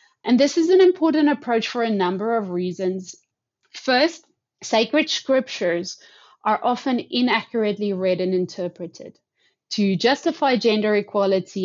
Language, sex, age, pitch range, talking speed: English, female, 30-49, 195-260 Hz, 125 wpm